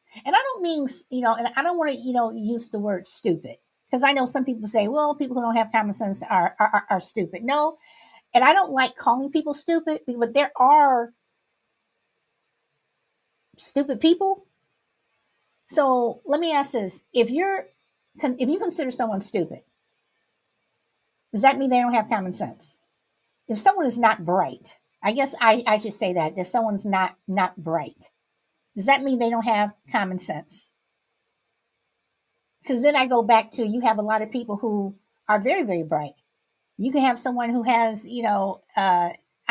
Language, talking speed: English, 180 wpm